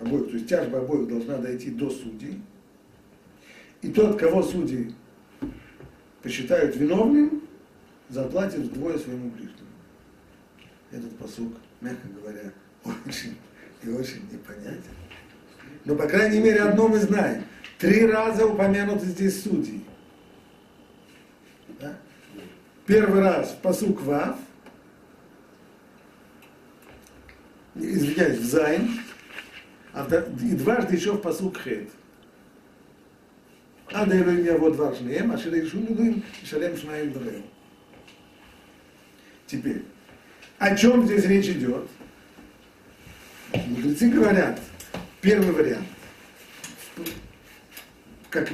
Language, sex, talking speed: Russian, male, 85 wpm